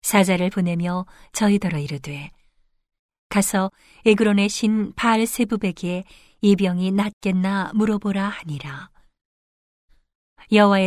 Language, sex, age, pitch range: Korean, female, 40-59, 175-210 Hz